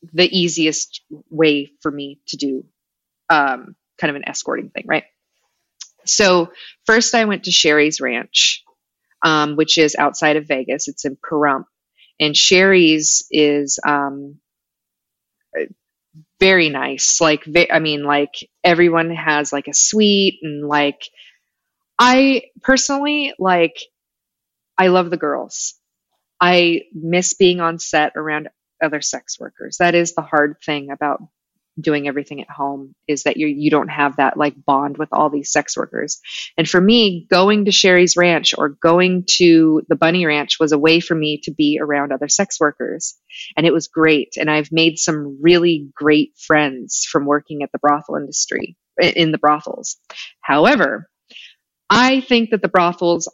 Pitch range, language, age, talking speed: 150-175 Hz, English, 20-39, 155 wpm